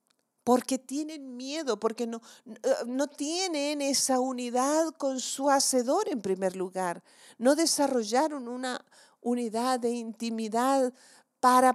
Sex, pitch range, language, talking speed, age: female, 205-265 Hz, Spanish, 110 wpm, 50-69